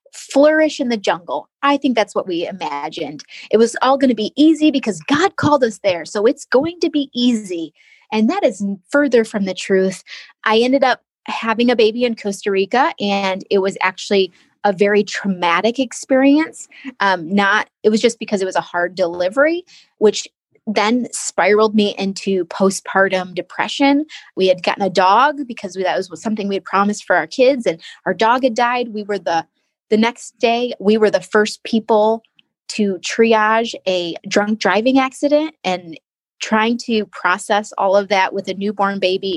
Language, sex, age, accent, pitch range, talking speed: English, female, 20-39, American, 195-245 Hz, 180 wpm